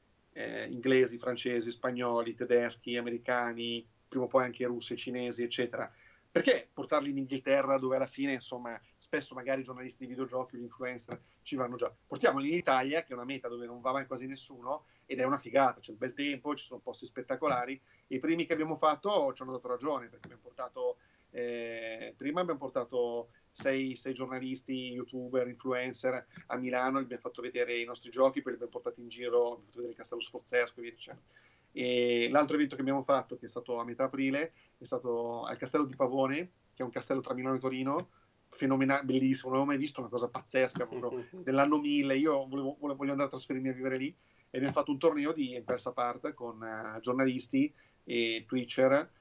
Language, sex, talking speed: Italian, male, 195 wpm